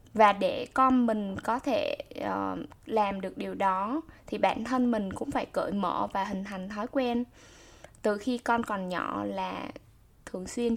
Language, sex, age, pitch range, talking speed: Vietnamese, female, 10-29, 205-260 Hz, 175 wpm